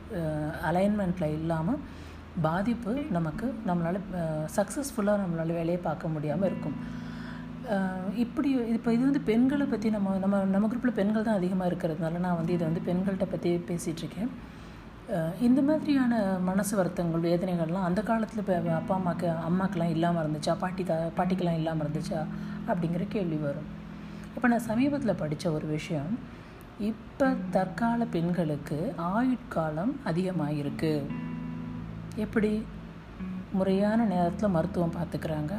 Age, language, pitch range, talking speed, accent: 50-69, Tamil, 160-210 Hz, 115 wpm, native